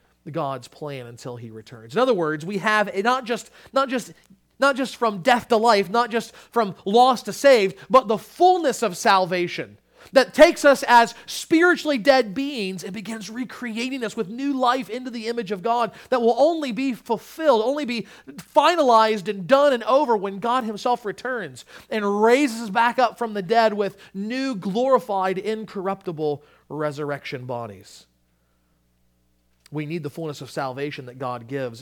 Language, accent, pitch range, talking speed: English, American, 185-265 Hz, 160 wpm